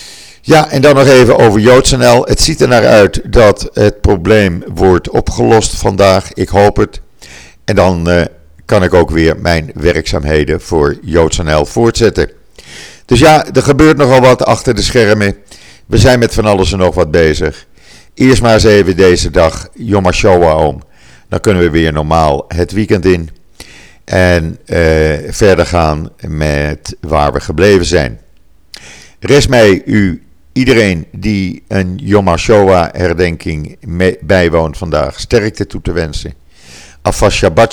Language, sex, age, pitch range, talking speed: Dutch, male, 50-69, 75-105 Hz, 150 wpm